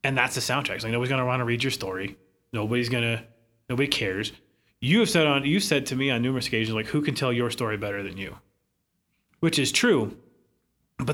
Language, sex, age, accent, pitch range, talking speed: English, male, 30-49, American, 110-145 Hz, 230 wpm